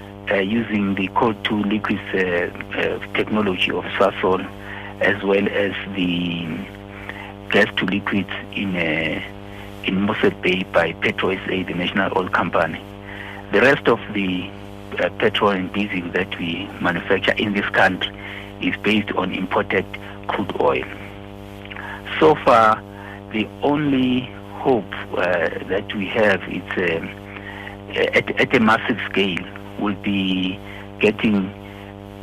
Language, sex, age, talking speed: English, male, 60-79, 125 wpm